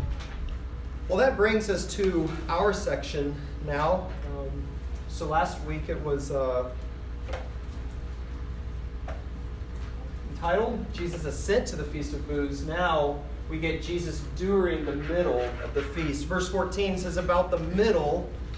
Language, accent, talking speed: English, American, 125 wpm